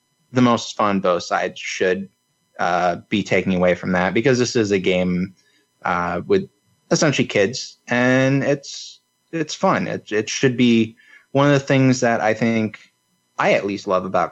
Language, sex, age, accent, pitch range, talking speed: English, male, 20-39, American, 95-125 Hz, 170 wpm